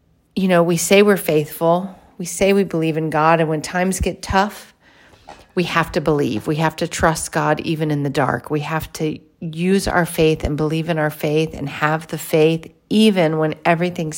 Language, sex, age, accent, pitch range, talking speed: English, female, 40-59, American, 150-175 Hz, 205 wpm